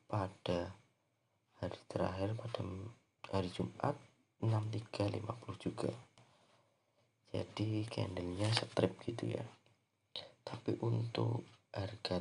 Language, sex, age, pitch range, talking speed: Indonesian, male, 30-49, 105-120 Hz, 80 wpm